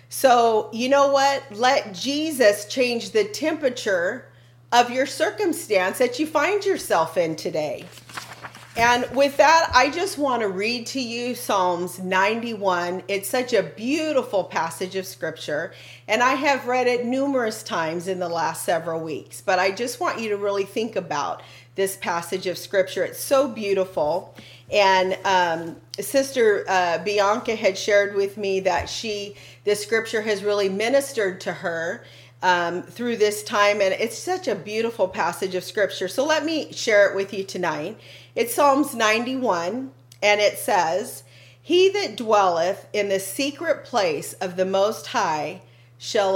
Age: 40-59